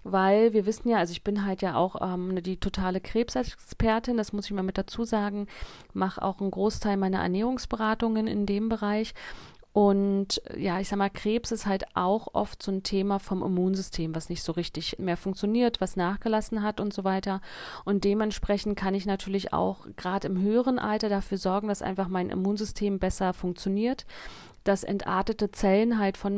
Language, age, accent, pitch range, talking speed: German, 40-59, German, 190-215 Hz, 180 wpm